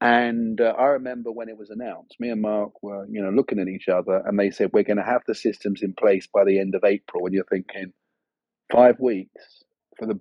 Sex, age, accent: male, 40-59, British